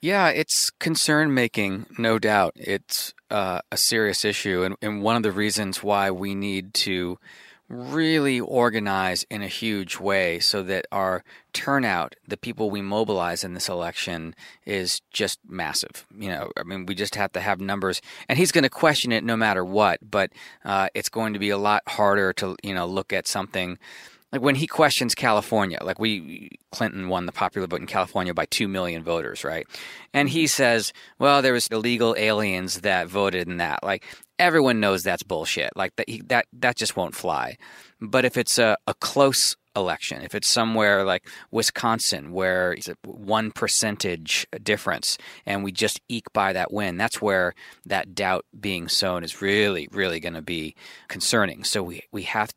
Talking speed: 185 wpm